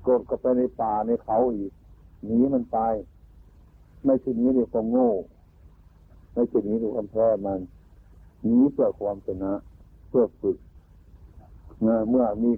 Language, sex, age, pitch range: Thai, male, 60-79, 85-120 Hz